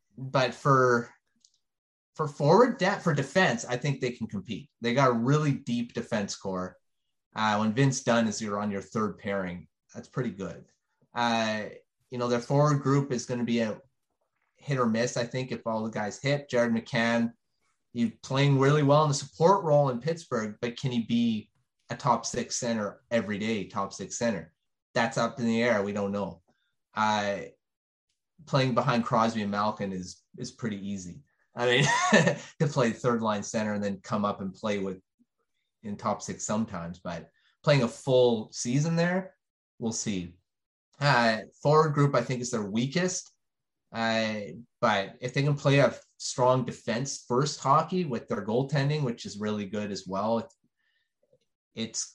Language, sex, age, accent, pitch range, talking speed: English, male, 30-49, American, 105-140 Hz, 175 wpm